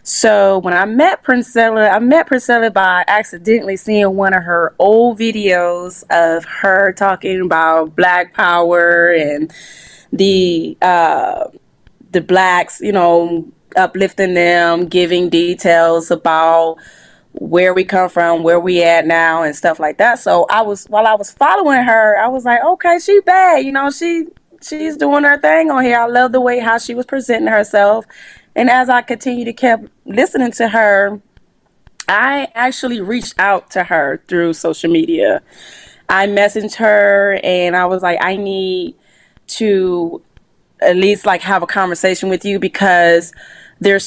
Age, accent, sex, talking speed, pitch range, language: 20-39, American, female, 160 wpm, 175-230 Hz, English